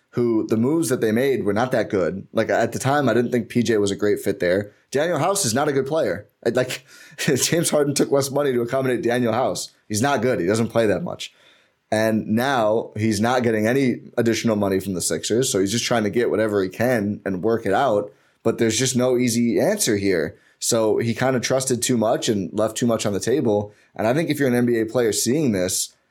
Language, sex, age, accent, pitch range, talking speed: English, male, 20-39, American, 105-125 Hz, 235 wpm